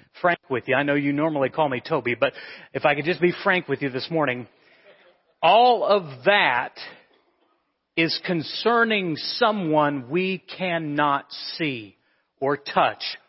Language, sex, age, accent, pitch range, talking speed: English, male, 40-59, American, 150-195 Hz, 145 wpm